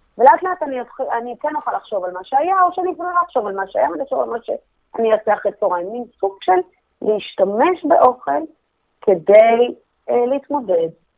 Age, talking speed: 30-49, 165 wpm